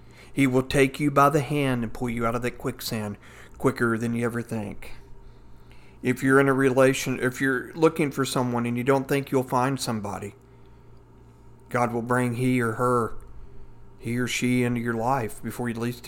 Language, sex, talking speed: English, male, 190 wpm